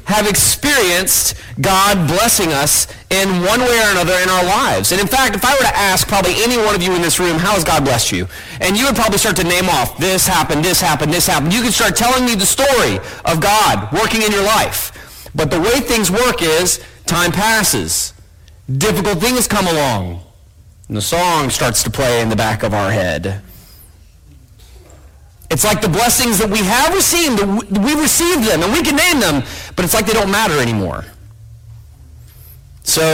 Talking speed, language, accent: 195 wpm, English, American